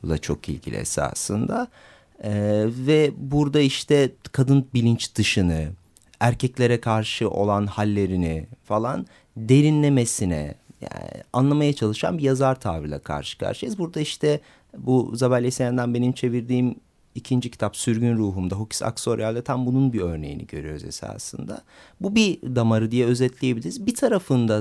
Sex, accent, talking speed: male, native, 125 wpm